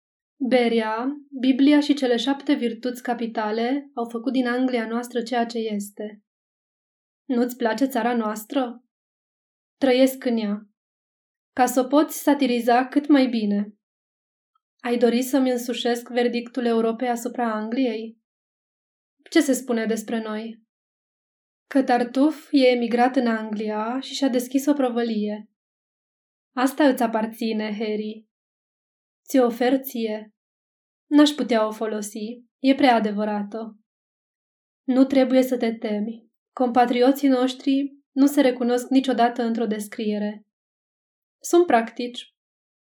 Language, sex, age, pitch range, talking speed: Romanian, female, 20-39, 225-265 Hz, 115 wpm